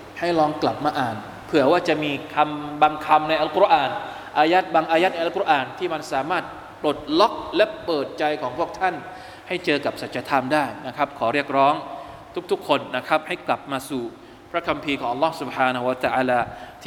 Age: 20-39